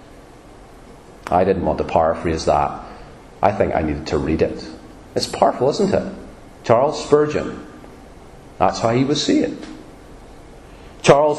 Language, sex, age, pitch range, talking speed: English, male, 30-49, 100-150 Hz, 130 wpm